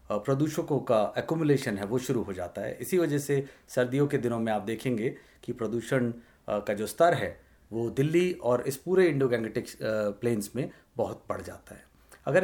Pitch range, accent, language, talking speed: 115-160 Hz, native, Hindi, 185 wpm